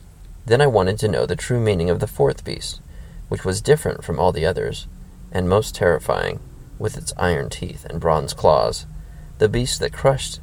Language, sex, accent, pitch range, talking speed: English, male, American, 75-110 Hz, 190 wpm